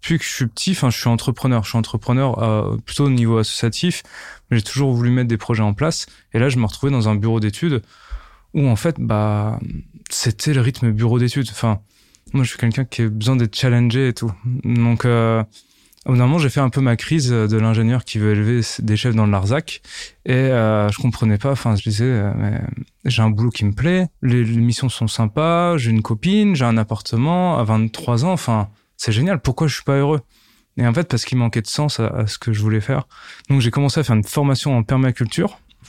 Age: 20-39